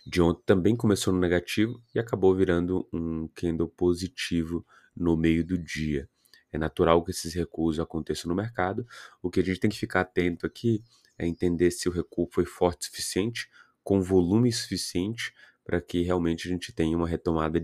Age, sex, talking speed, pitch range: 20-39, male, 180 wpm, 80-90 Hz